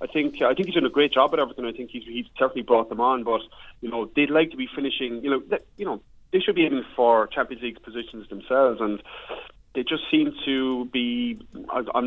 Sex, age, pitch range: male, 30-49, 120-150 Hz